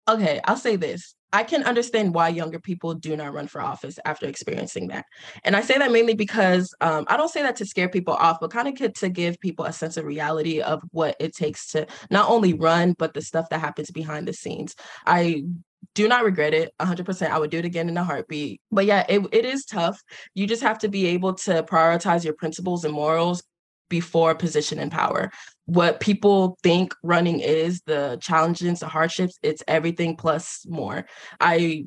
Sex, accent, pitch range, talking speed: female, American, 155-180 Hz, 210 wpm